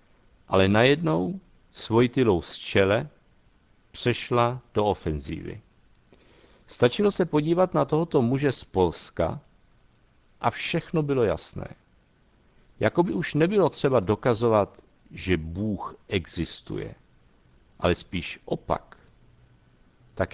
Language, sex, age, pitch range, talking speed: Czech, male, 60-79, 95-145 Hz, 95 wpm